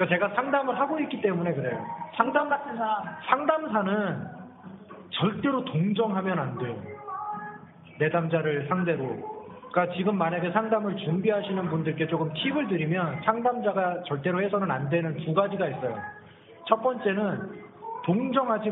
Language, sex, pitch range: Korean, male, 170-230 Hz